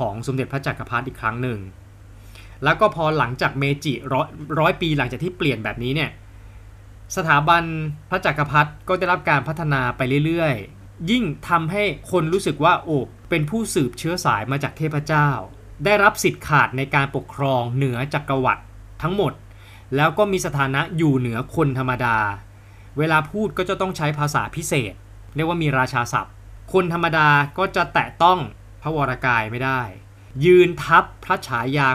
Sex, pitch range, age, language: male, 115-155 Hz, 20-39, Thai